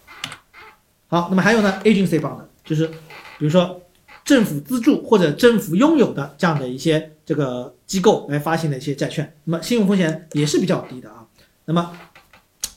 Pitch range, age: 145-195 Hz, 40-59